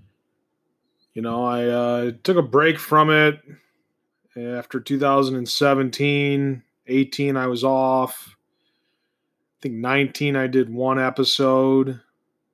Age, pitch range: 30-49, 125-145 Hz